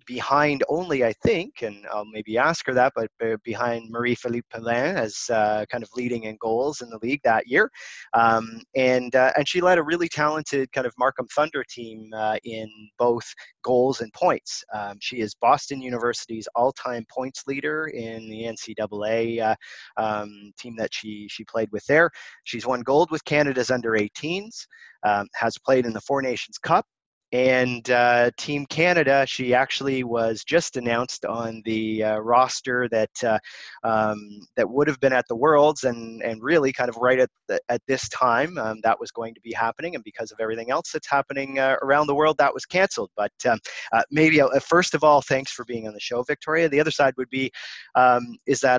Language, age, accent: English, 30-49, American